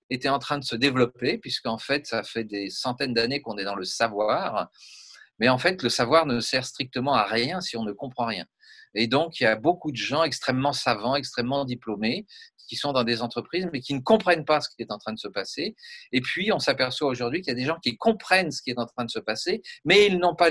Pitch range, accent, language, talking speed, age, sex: 115-150 Hz, French, French, 255 wpm, 40-59, male